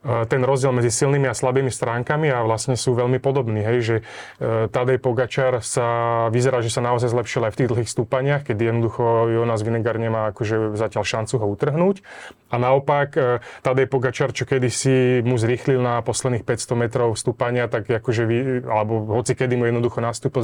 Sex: male